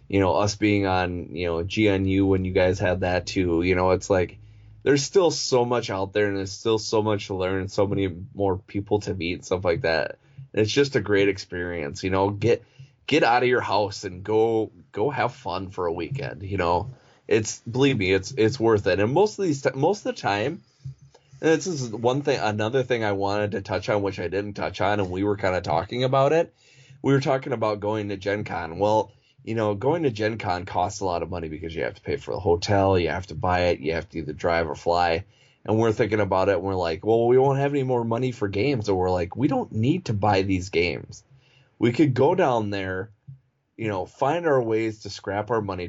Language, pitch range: English, 95-130 Hz